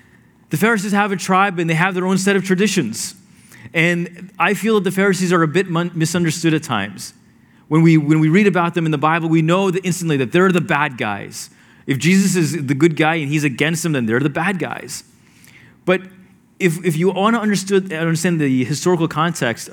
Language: English